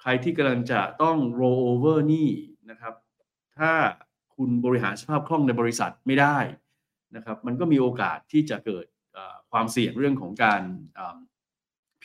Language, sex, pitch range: Thai, male, 110-145 Hz